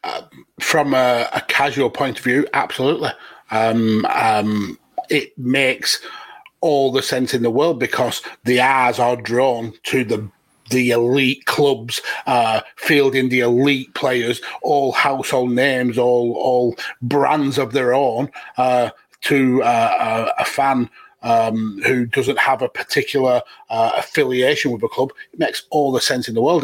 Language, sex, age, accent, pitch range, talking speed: English, male, 30-49, British, 120-135 Hz, 155 wpm